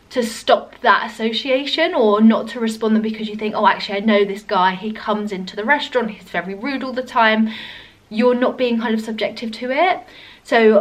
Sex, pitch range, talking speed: female, 210-250 Hz, 210 wpm